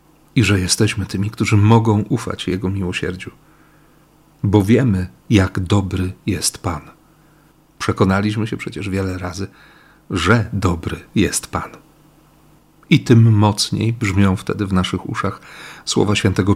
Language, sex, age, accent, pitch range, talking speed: Polish, male, 40-59, native, 100-130 Hz, 125 wpm